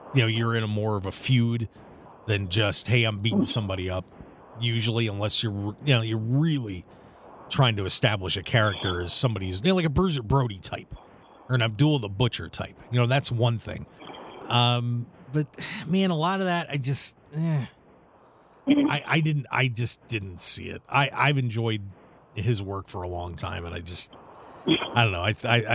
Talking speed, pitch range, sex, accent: 195 wpm, 105-145 Hz, male, American